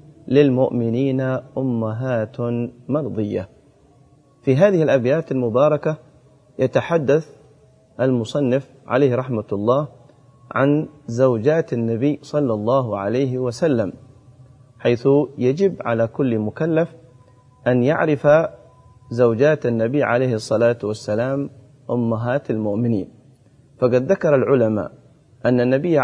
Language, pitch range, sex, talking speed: Arabic, 120-145 Hz, male, 90 wpm